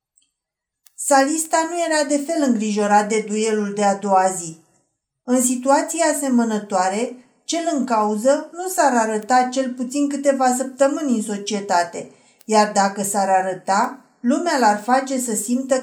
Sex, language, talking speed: female, Romanian, 135 wpm